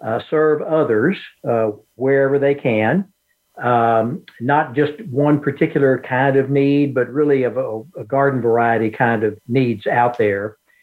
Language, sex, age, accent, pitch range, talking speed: English, male, 60-79, American, 130-165 Hz, 155 wpm